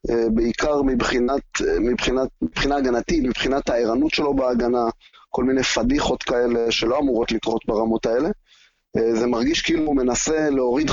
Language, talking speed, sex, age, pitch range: Hebrew, 135 wpm, male, 30-49, 125-165 Hz